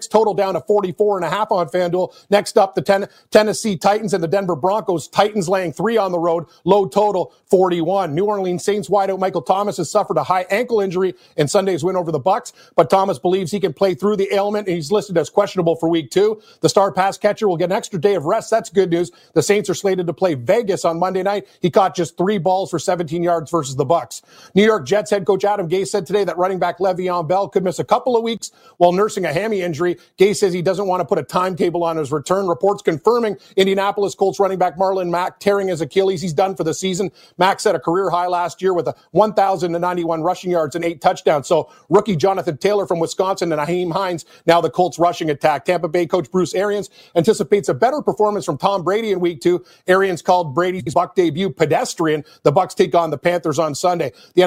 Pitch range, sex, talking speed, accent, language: 175-200 Hz, male, 225 wpm, American, English